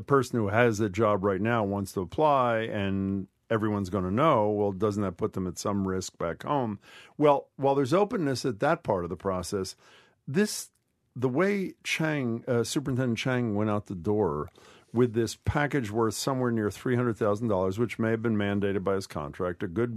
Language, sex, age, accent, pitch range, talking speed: English, male, 50-69, American, 100-140 Hz, 190 wpm